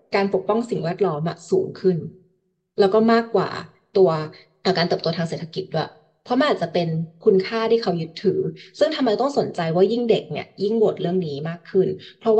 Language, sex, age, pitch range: Thai, female, 20-39, 165-210 Hz